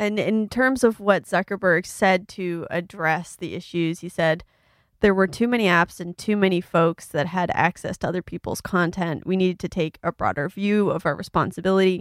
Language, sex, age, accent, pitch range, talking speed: English, female, 20-39, American, 175-200 Hz, 195 wpm